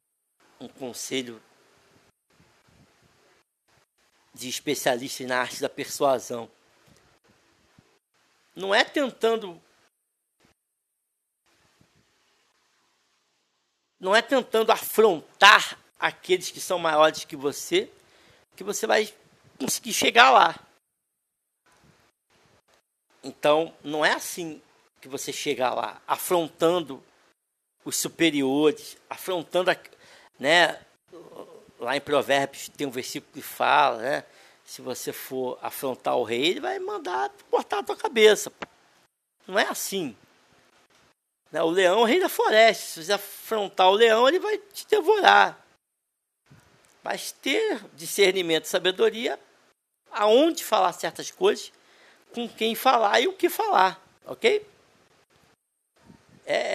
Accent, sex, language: Brazilian, male, Portuguese